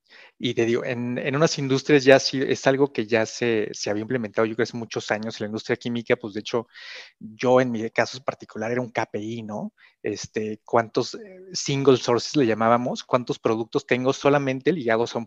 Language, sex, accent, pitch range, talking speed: Spanish, male, Mexican, 115-140 Hz, 205 wpm